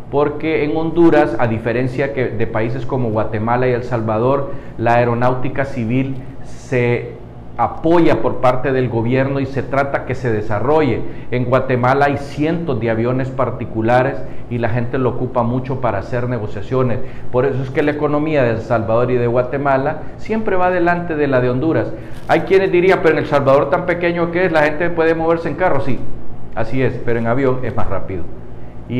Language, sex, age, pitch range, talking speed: Spanish, male, 50-69, 120-145 Hz, 185 wpm